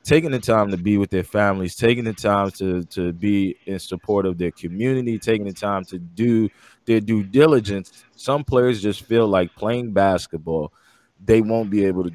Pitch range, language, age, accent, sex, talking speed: 95-115 Hz, English, 20-39, American, male, 195 wpm